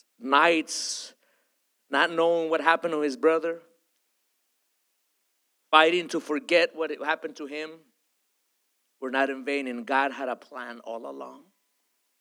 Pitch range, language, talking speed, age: 140-180 Hz, English, 130 wpm, 50-69